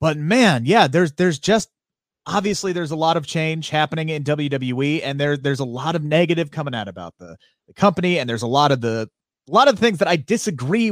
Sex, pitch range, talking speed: male, 135-165 Hz, 225 wpm